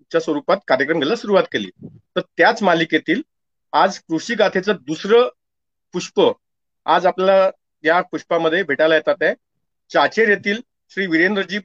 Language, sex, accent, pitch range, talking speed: Marathi, male, native, 155-210 Hz, 125 wpm